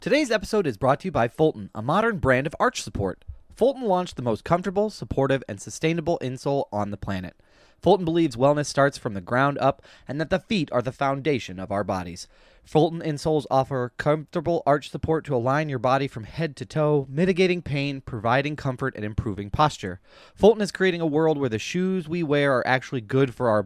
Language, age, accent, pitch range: English, 20-39, American, 110-155 Hz